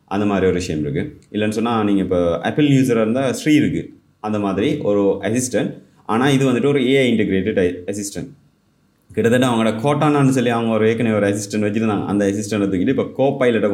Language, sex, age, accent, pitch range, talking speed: Tamil, male, 30-49, native, 95-120 Hz, 185 wpm